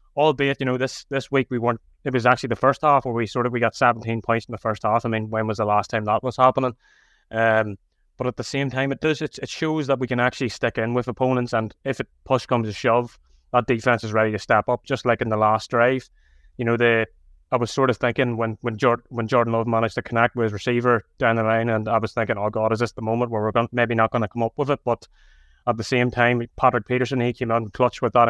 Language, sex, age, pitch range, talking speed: English, male, 20-39, 115-130 Hz, 280 wpm